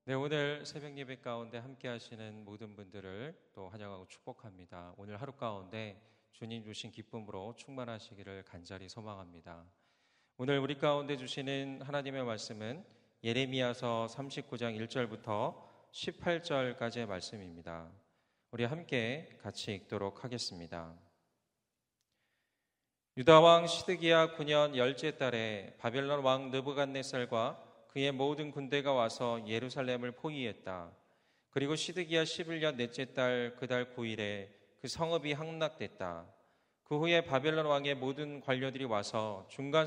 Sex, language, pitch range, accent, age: male, Korean, 110-145 Hz, native, 40-59